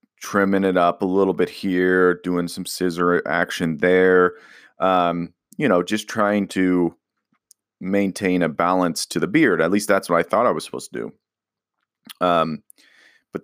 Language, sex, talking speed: English, male, 165 wpm